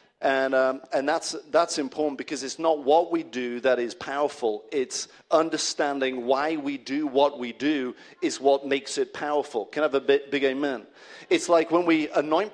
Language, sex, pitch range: English, male, 135-175 Hz